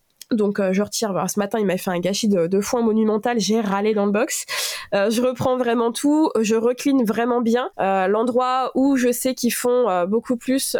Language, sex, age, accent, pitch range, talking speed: French, female, 20-39, French, 210-245 Hz, 220 wpm